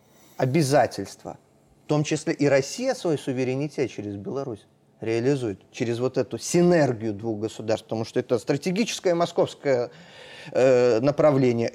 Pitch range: 130-175 Hz